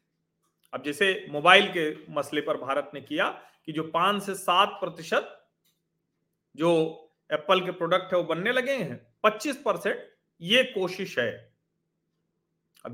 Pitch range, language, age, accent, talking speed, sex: 165-210 Hz, Hindi, 40-59, native, 105 wpm, male